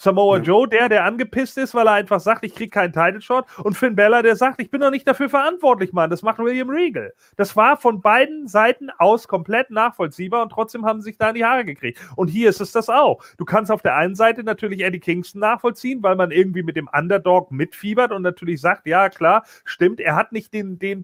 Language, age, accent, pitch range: German, 40-59, German, 185-235 Hz